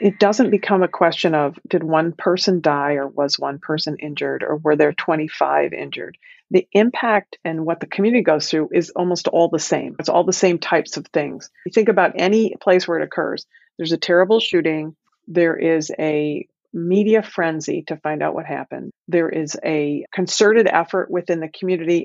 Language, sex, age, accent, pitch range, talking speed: English, female, 40-59, American, 160-190 Hz, 190 wpm